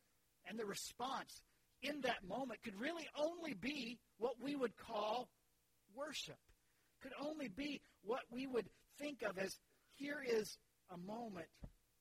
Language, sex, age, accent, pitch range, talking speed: English, male, 50-69, American, 170-240 Hz, 140 wpm